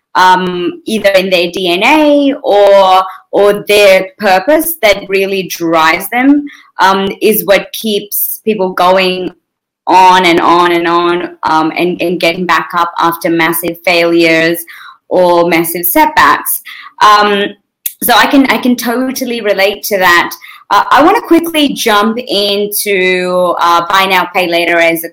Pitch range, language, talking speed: 180-220 Hz, English, 145 wpm